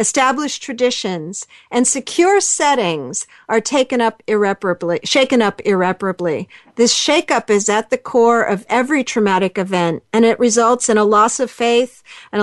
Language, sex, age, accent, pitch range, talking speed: English, female, 50-69, American, 200-250 Hz, 150 wpm